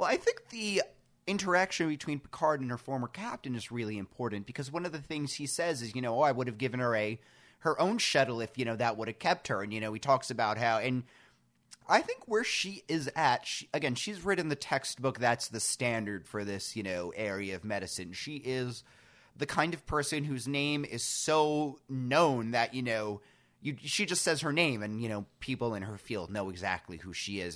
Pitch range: 115-150 Hz